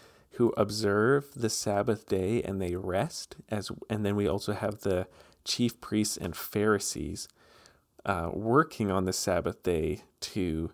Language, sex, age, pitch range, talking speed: English, male, 40-59, 90-115 Hz, 145 wpm